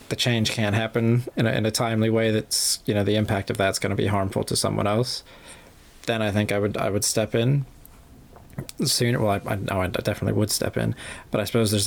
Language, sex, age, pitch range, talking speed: English, male, 20-39, 105-120 Hz, 245 wpm